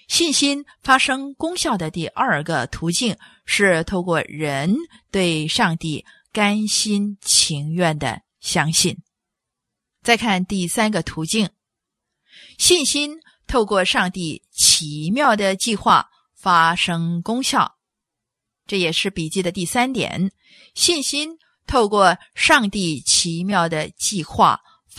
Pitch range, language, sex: 170-245 Hz, English, female